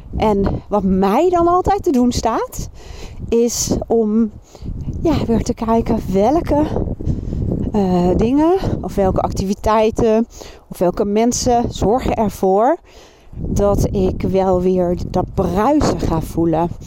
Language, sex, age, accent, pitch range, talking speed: Dutch, female, 40-59, Dutch, 175-225 Hz, 115 wpm